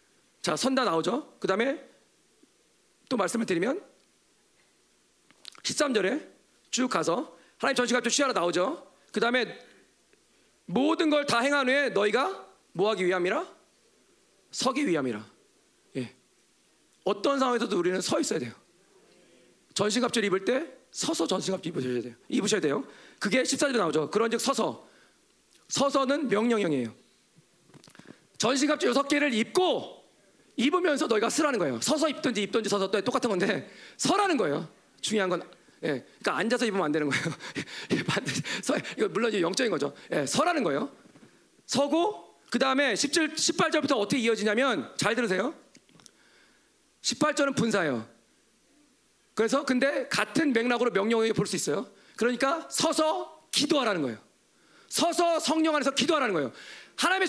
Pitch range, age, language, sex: 215-300 Hz, 40-59, Korean, male